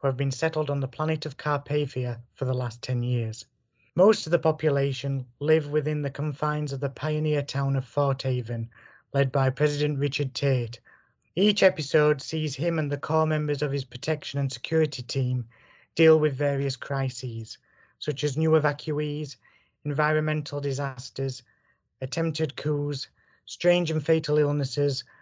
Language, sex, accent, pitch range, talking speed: English, male, British, 130-150 Hz, 150 wpm